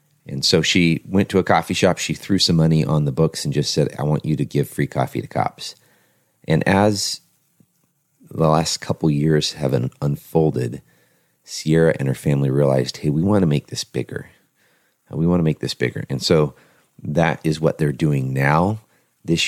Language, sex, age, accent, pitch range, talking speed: English, male, 30-49, American, 70-85 Hz, 190 wpm